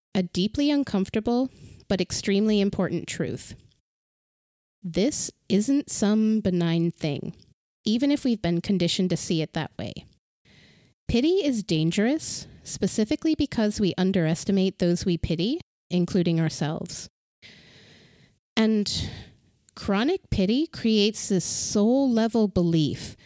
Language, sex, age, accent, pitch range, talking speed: English, female, 30-49, American, 170-225 Hz, 110 wpm